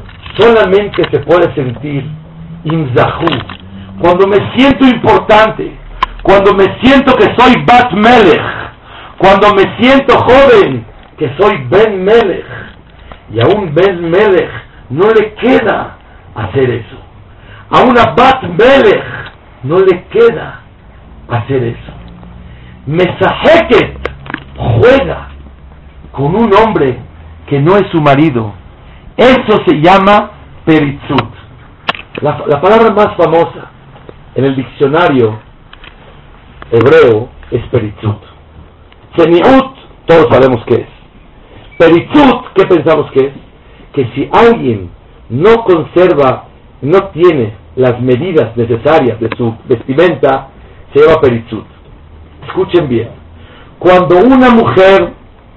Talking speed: 105 wpm